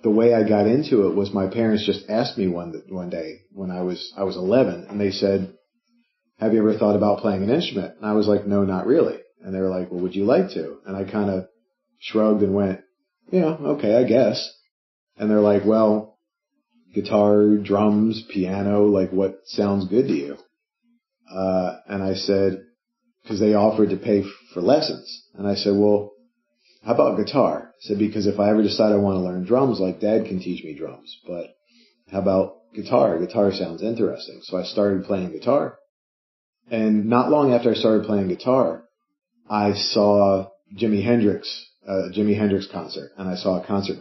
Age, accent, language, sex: 40-59, American, English, male